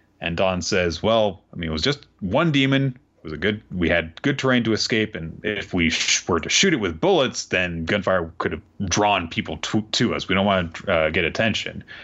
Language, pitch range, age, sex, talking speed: English, 80-115 Hz, 30-49, male, 230 wpm